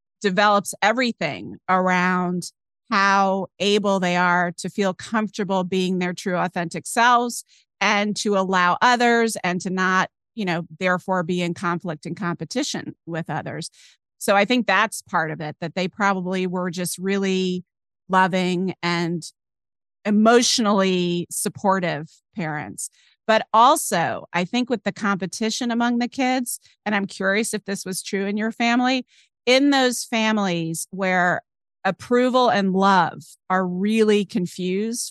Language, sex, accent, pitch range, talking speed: English, female, American, 175-210 Hz, 135 wpm